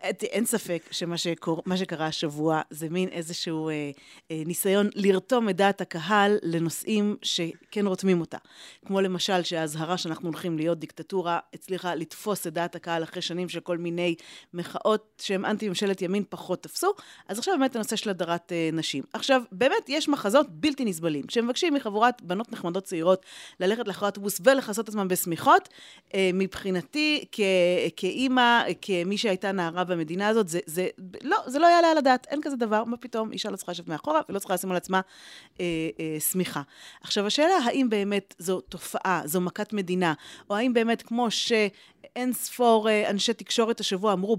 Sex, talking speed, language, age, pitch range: female, 160 wpm, Hebrew, 30-49, 175-230 Hz